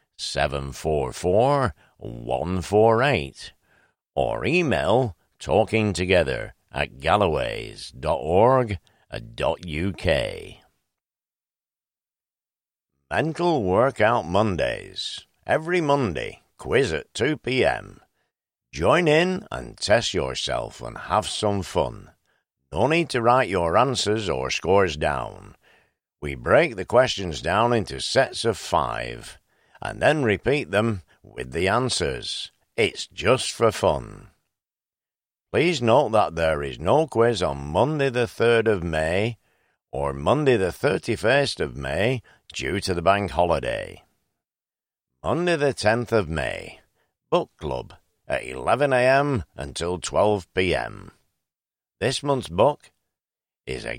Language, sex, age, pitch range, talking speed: English, male, 60-79, 85-125 Hz, 115 wpm